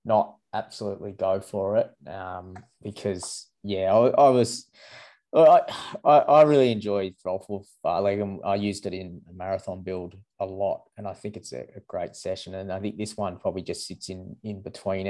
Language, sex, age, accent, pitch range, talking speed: English, male, 20-39, Australian, 95-105 Hz, 185 wpm